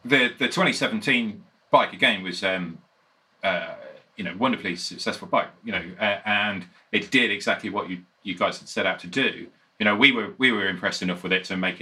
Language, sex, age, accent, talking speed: English, male, 40-59, British, 210 wpm